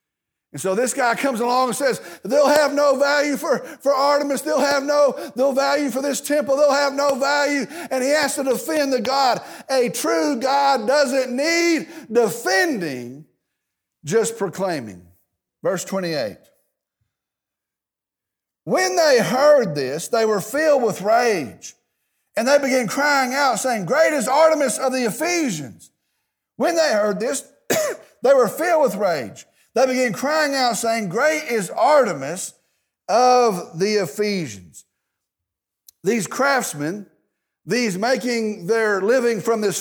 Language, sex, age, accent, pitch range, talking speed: English, male, 50-69, American, 200-280 Hz, 140 wpm